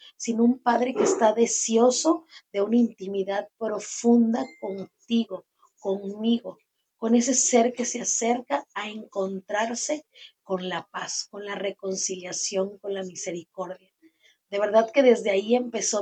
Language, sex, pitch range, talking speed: Spanish, female, 190-230 Hz, 130 wpm